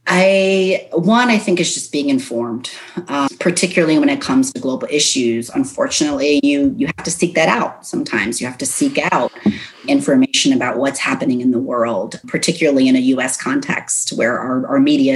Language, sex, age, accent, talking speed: English, female, 30-49, American, 180 wpm